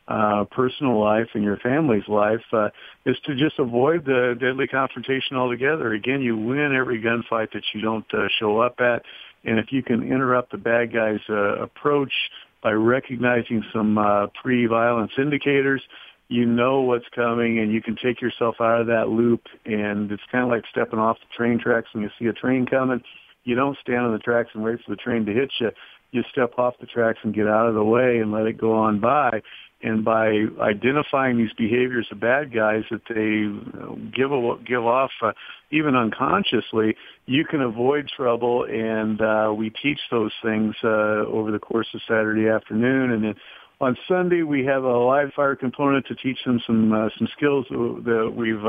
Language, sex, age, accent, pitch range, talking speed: English, male, 50-69, American, 110-125 Hz, 195 wpm